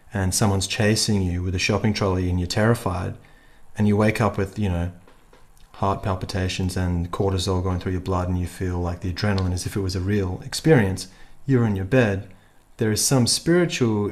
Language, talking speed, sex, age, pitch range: English, 200 wpm, male, 30-49, 95-110 Hz